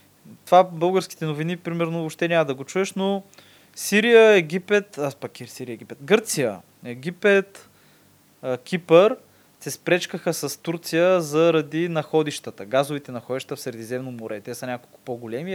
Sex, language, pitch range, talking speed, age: male, Bulgarian, 125-185 Hz, 130 wpm, 20-39